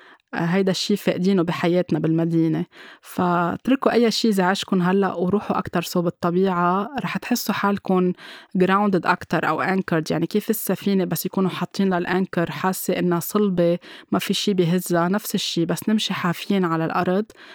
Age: 20-39